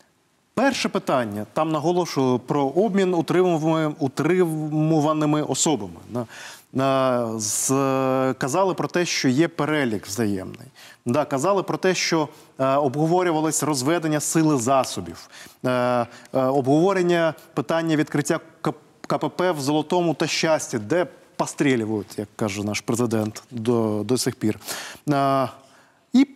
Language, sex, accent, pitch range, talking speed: Ukrainian, male, native, 130-185 Hz, 100 wpm